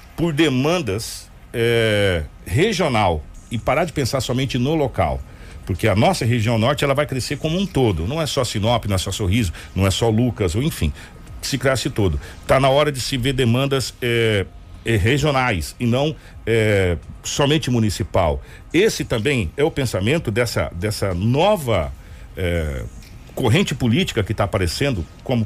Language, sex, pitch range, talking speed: Portuguese, male, 100-145 Hz, 165 wpm